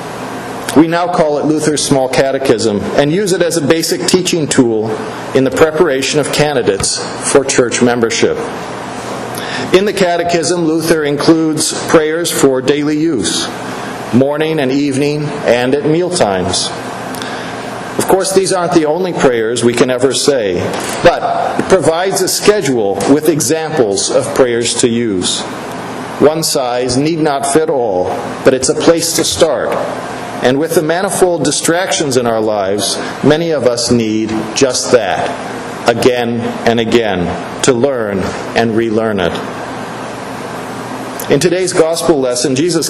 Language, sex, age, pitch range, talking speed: English, male, 50-69, 130-170 Hz, 140 wpm